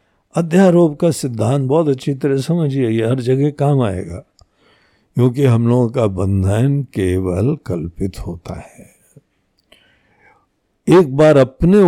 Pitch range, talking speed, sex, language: 105-150 Hz, 120 wpm, male, Hindi